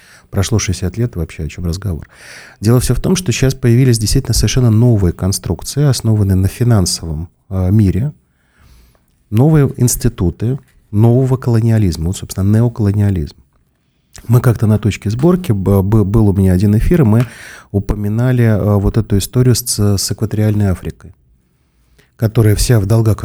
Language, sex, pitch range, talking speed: Russian, male, 95-120 Hz, 145 wpm